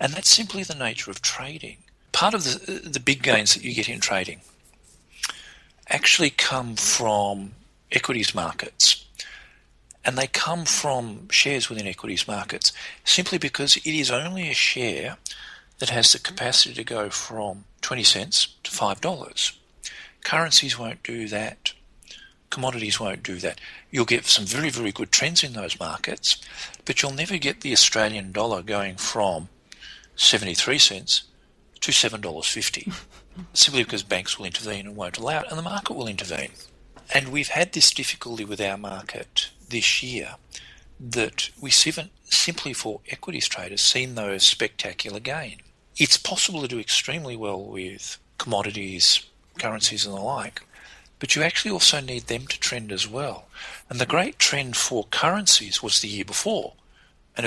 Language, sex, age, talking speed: English, male, 50-69, 155 wpm